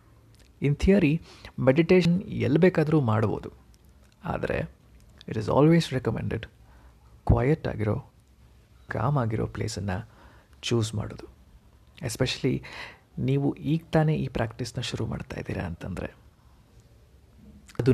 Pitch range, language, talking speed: 95-145 Hz, Kannada, 95 wpm